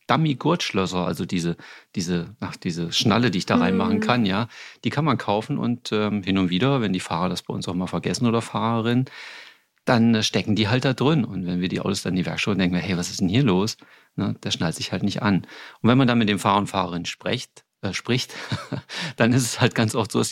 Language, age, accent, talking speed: German, 40-59, German, 250 wpm